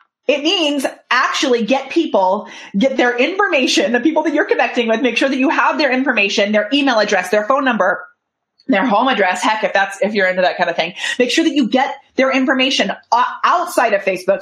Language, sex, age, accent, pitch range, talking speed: English, female, 30-49, American, 190-270 Hz, 210 wpm